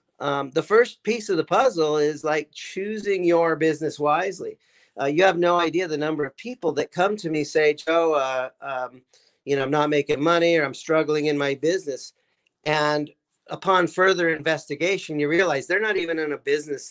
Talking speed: 190 wpm